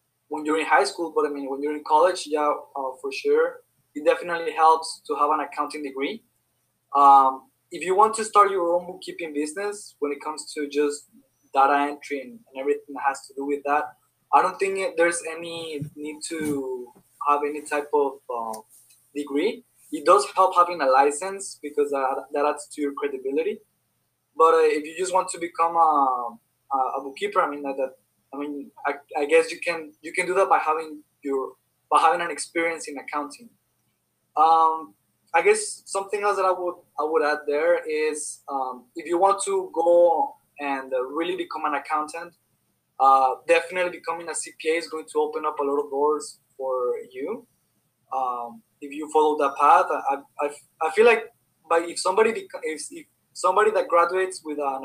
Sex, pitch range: male, 145-185 Hz